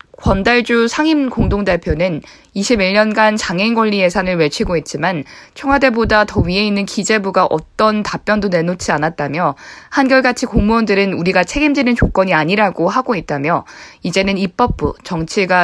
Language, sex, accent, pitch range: Korean, female, native, 180-235 Hz